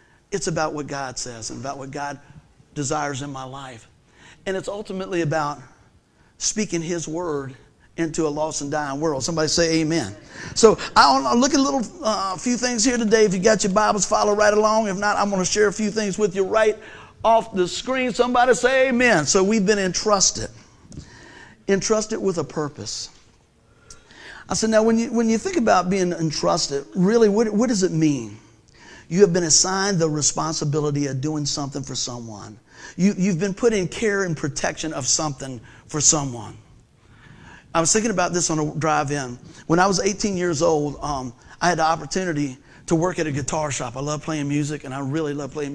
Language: English